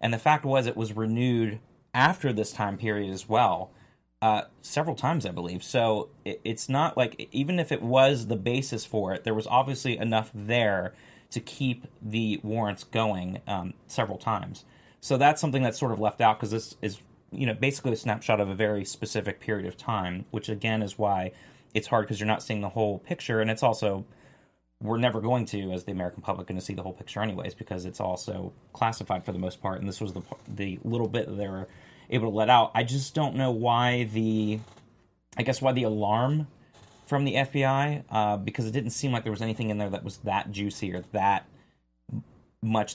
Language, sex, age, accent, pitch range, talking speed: English, male, 30-49, American, 100-120 Hz, 210 wpm